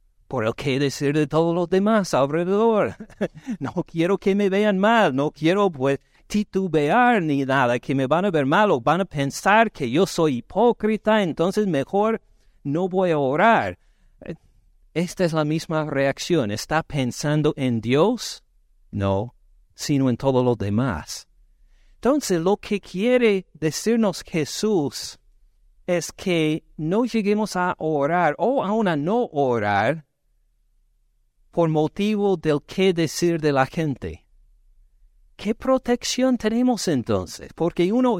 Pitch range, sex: 135-215 Hz, male